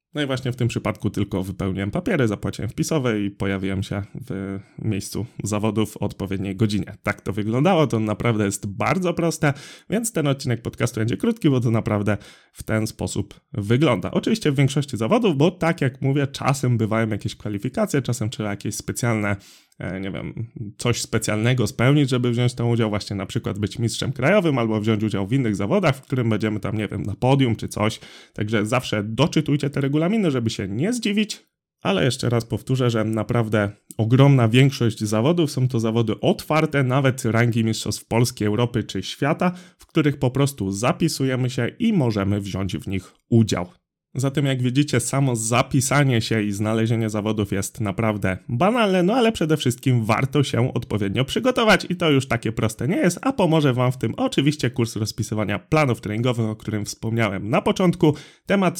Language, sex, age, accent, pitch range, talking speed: Polish, male, 20-39, native, 105-145 Hz, 175 wpm